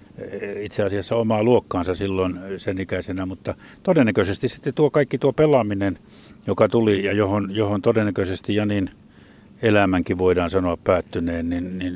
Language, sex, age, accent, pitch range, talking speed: Finnish, male, 50-69, native, 95-110 Hz, 125 wpm